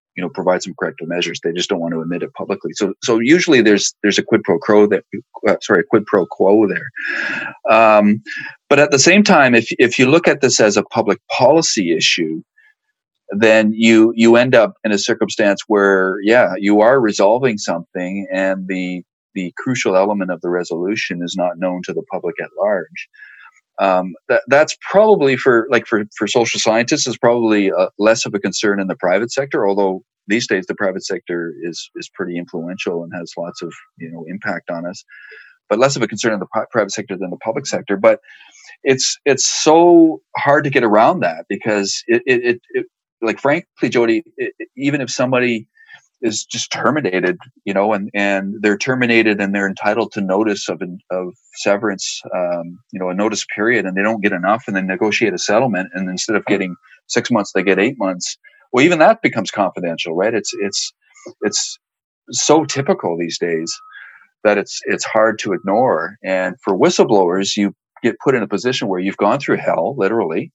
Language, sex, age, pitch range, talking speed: English, male, 40-59, 95-130 Hz, 195 wpm